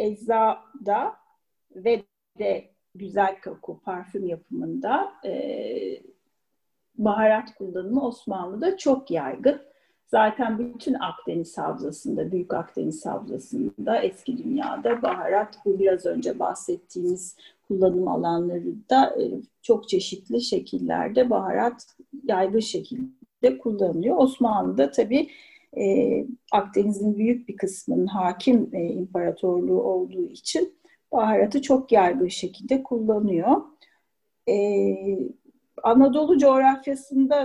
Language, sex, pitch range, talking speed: Turkish, female, 185-270 Hz, 85 wpm